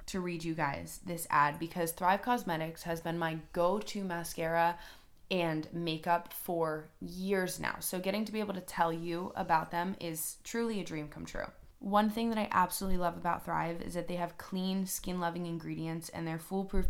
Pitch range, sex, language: 165-195 Hz, female, English